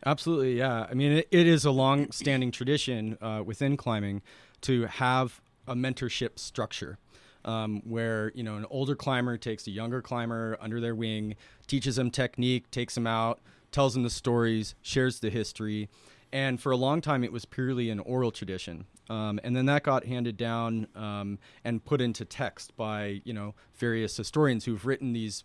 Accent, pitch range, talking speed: American, 105-125 Hz, 180 wpm